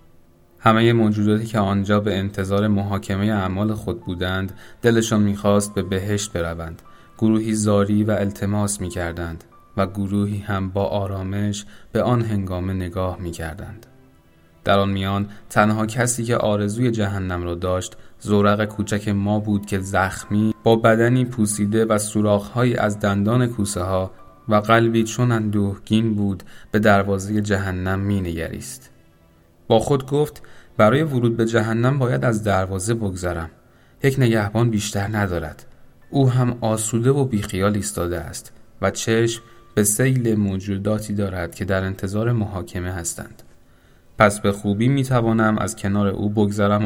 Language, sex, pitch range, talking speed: Persian, male, 95-110 Hz, 135 wpm